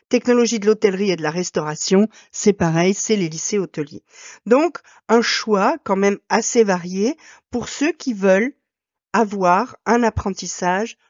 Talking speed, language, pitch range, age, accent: 145 wpm, French, 175-235 Hz, 50-69, French